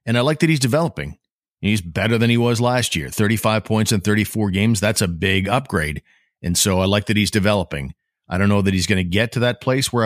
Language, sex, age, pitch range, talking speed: English, male, 50-69, 95-120 Hz, 245 wpm